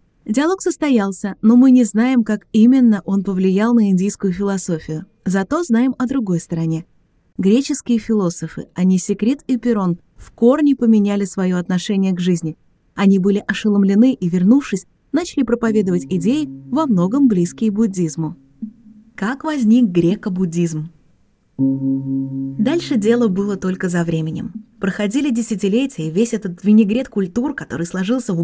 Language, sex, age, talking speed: Russian, female, 20-39, 135 wpm